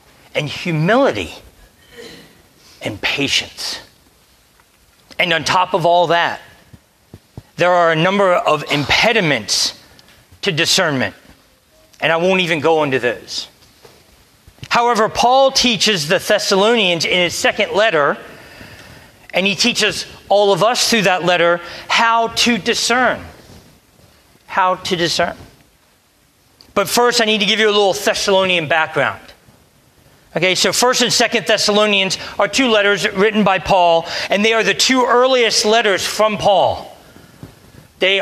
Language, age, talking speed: English, 40-59, 130 wpm